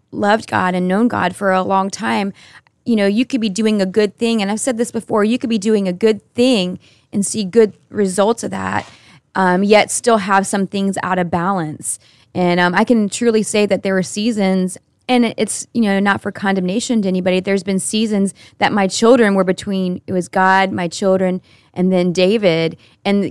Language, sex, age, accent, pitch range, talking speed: English, female, 20-39, American, 185-215 Hz, 210 wpm